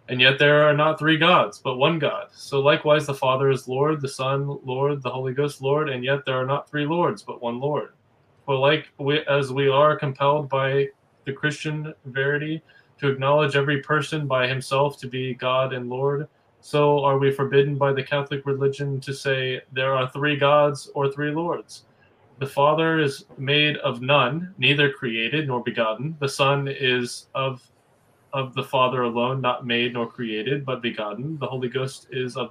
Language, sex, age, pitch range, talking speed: English, male, 20-39, 125-145 Hz, 185 wpm